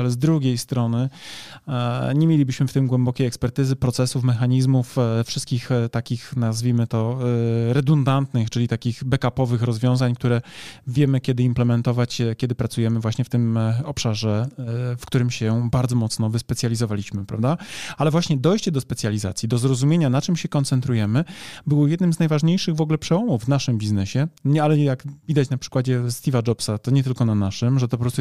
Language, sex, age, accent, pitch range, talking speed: Polish, male, 20-39, native, 120-145 Hz, 160 wpm